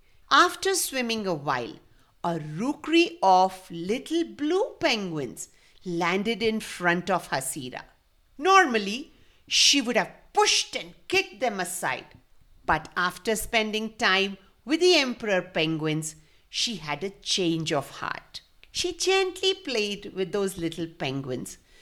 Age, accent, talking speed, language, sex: 50-69, Indian, 125 wpm, English, female